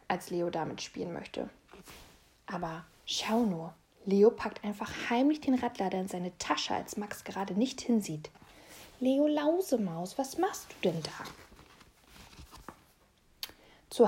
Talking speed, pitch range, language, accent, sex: 130 wpm, 200-270 Hz, German, German, female